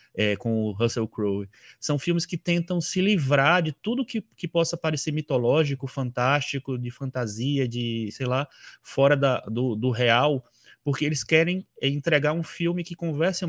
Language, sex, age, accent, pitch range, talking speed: Portuguese, male, 20-39, Brazilian, 125-160 Hz, 155 wpm